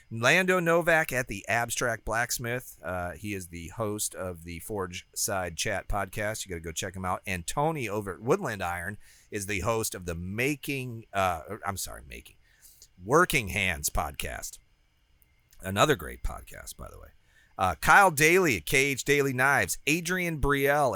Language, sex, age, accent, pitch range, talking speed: English, male, 40-59, American, 95-150 Hz, 165 wpm